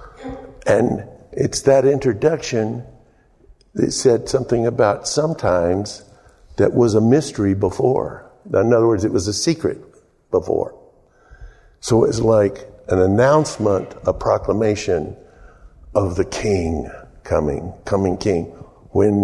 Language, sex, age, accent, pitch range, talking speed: English, male, 60-79, American, 95-125 Hz, 110 wpm